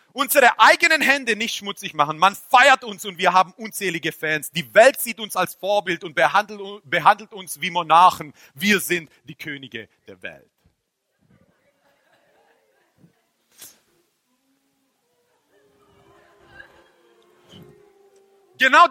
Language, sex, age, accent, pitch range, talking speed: German, male, 40-59, German, 170-260 Hz, 105 wpm